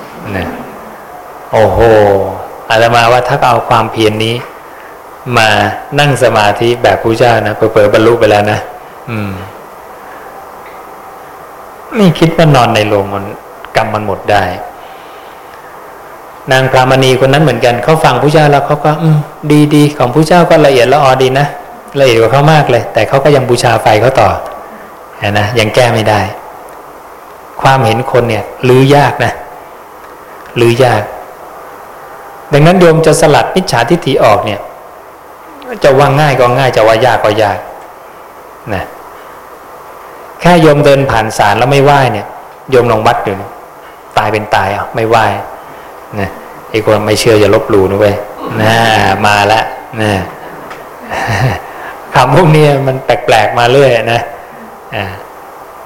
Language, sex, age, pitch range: English, male, 20-39, 105-145 Hz